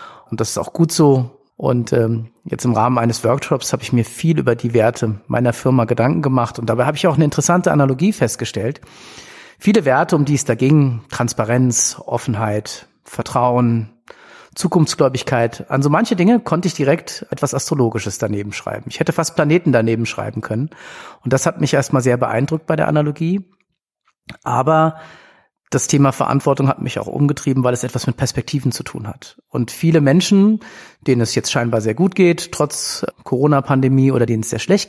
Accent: German